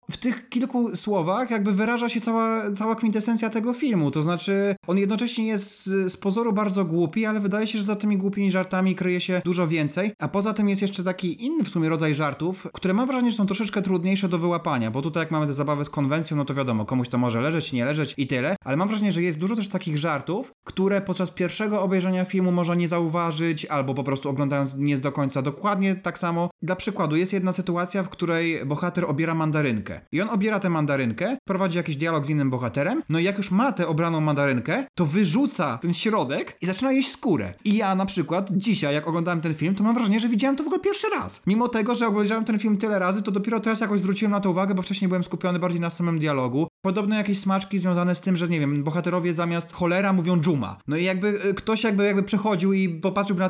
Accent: native